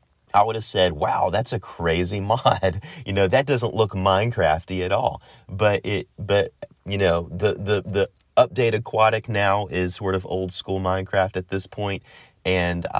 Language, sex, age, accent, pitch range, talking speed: English, male, 30-49, American, 85-105 Hz, 175 wpm